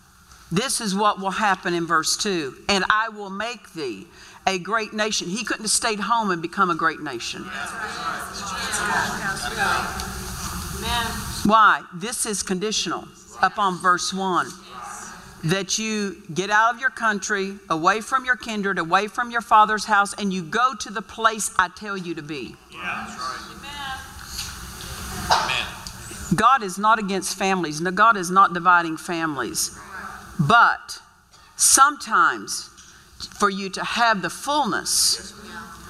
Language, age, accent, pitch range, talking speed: English, 50-69, American, 180-220 Hz, 130 wpm